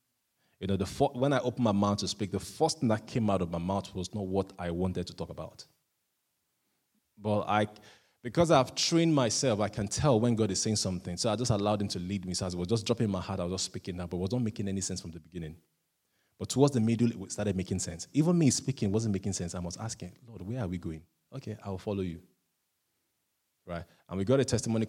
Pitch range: 95-115 Hz